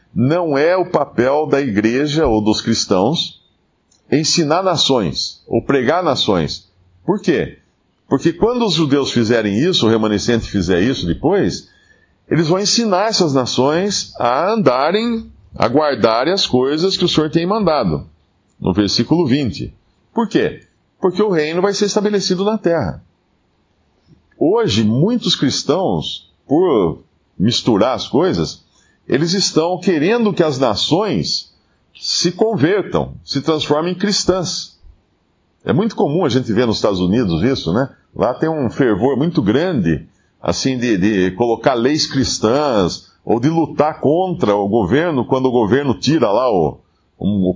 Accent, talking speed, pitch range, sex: Brazilian, 140 wpm, 110-175 Hz, male